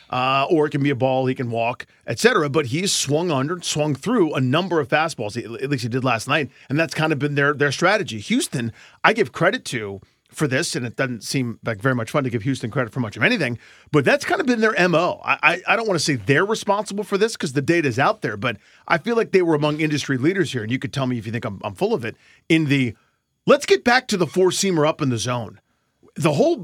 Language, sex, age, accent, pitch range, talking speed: English, male, 40-59, American, 130-170 Hz, 270 wpm